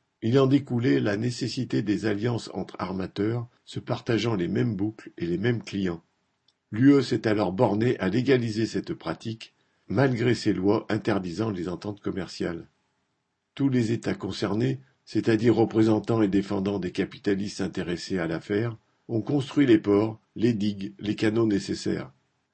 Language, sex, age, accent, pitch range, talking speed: French, male, 60-79, French, 100-120 Hz, 145 wpm